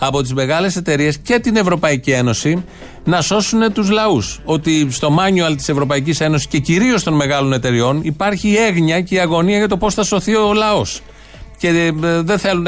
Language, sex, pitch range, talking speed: Greek, male, 135-190 Hz, 185 wpm